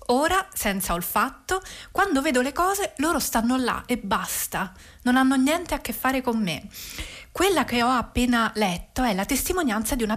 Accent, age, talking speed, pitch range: native, 30-49, 175 wpm, 200-270 Hz